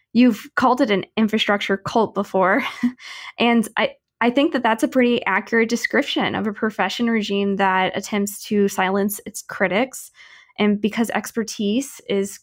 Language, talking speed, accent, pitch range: English, 150 wpm, American, 195-235 Hz